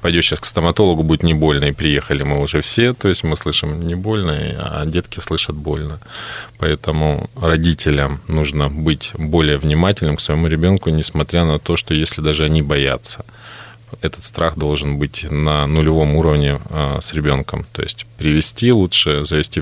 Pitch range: 75-95 Hz